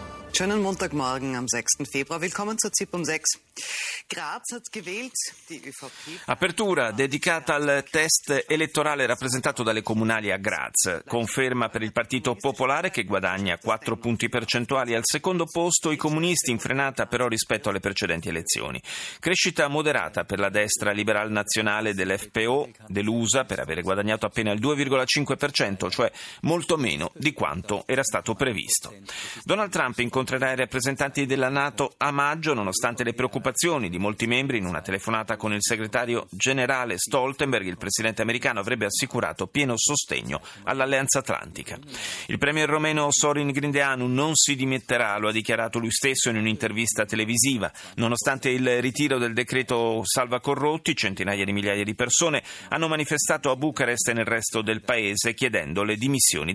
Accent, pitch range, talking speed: native, 110-145 Hz, 145 wpm